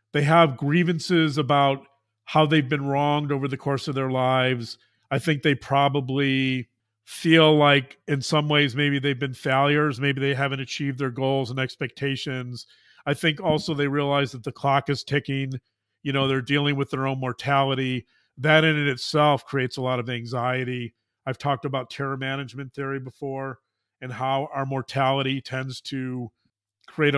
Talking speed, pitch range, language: 170 wpm, 130-145 Hz, English